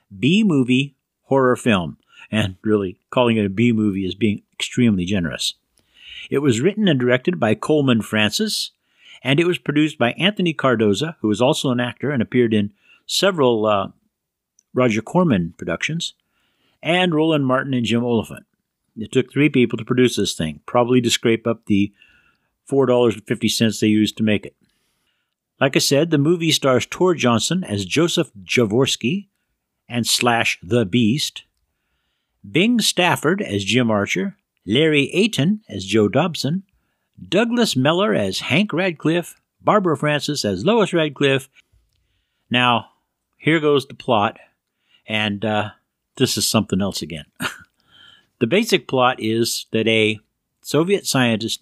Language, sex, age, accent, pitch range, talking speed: English, male, 50-69, American, 110-160 Hz, 140 wpm